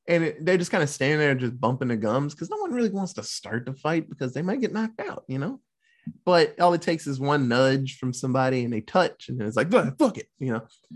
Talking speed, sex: 255 wpm, male